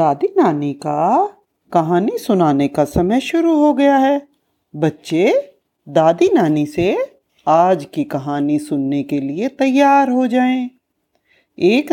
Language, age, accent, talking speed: Hindi, 50-69, native, 125 wpm